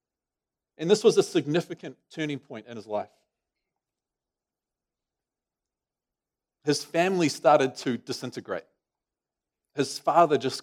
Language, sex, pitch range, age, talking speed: English, male, 150-220 Hz, 40-59, 100 wpm